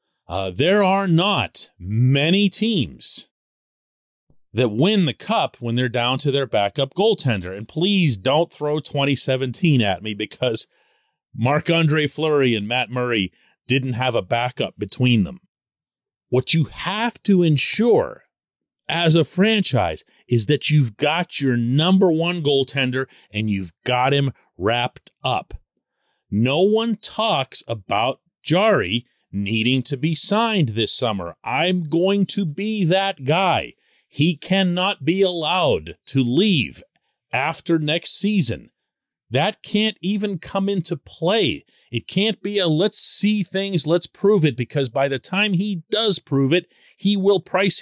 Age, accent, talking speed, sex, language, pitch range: 40-59, American, 140 wpm, male, English, 125-190 Hz